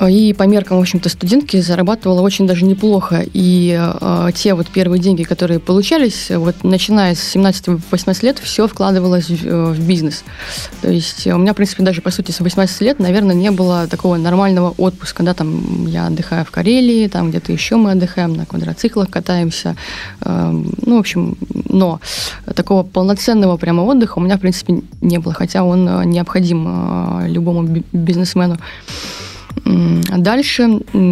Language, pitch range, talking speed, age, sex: Russian, 175-205 Hz, 160 wpm, 20-39, female